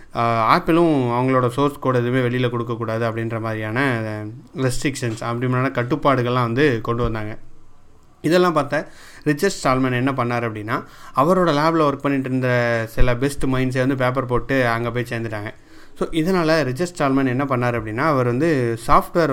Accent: native